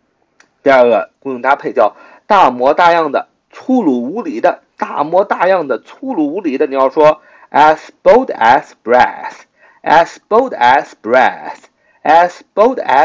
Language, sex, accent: Chinese, male, native